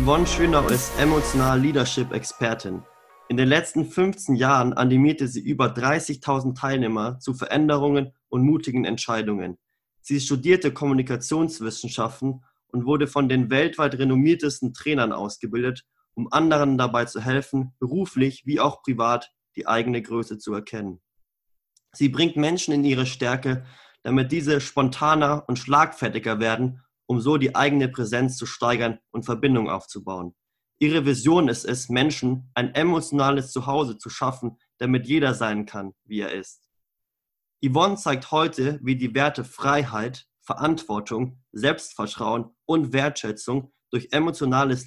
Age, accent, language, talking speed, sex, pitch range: 30-49, German, German, 130 wpm, male, 120-145 Hz